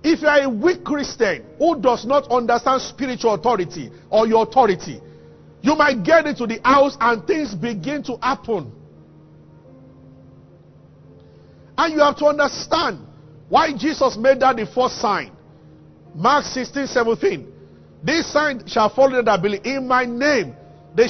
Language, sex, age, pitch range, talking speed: English, male, 50-69, 220-290 Hz, 145 wpm